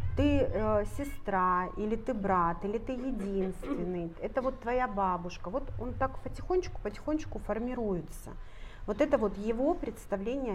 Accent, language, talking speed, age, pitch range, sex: native, Russian, 135 wpm, 40-59, 175-255 Hz, female